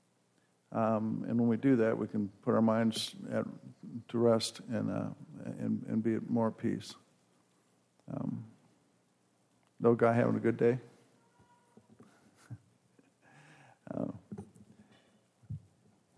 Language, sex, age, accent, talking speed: English, male, 50-69, American, 115 wpm